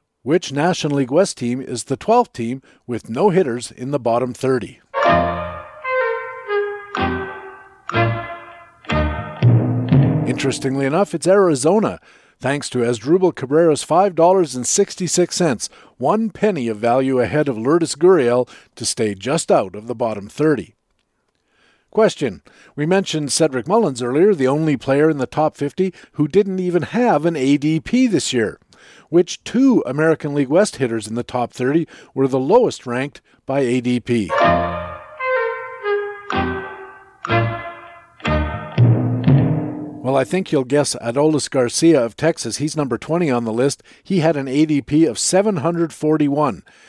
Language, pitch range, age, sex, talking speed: English, 125-180 Hz, 50-69, male, 125 wpm